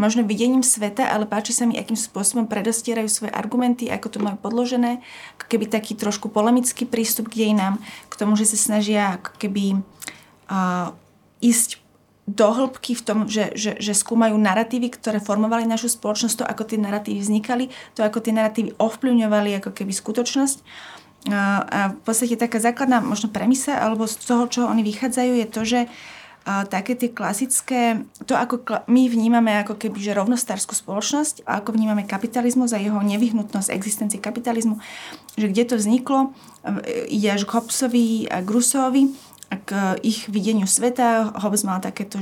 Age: 30-49